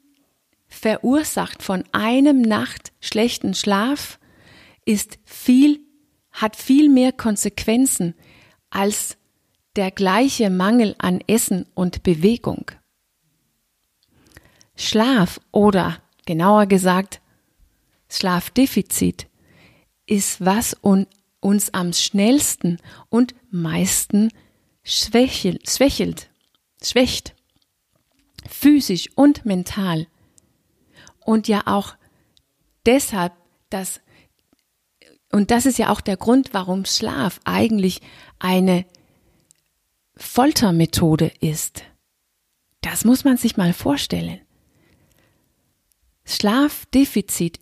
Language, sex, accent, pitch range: German, female, German, 180-245 Hz